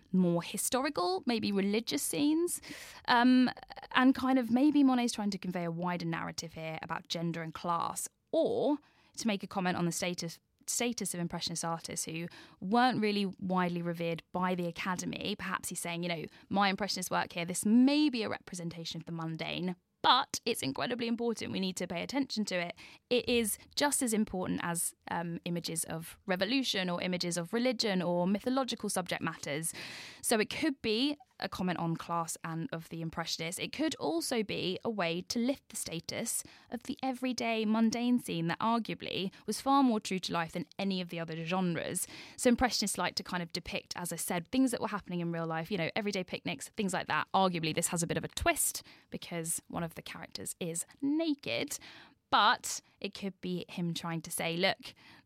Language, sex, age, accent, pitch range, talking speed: English, female, 10-29, British, 170-235 Hz, 190 wpm